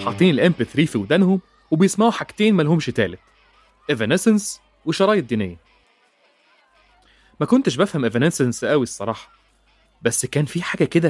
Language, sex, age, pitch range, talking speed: Arabic, male, 30-49, 110-180 Hz, 125 wpm